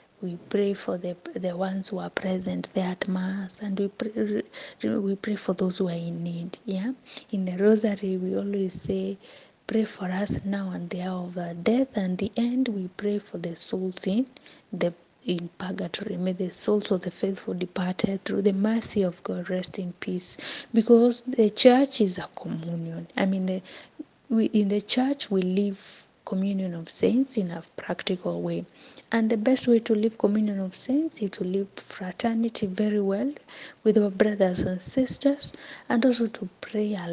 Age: 20-39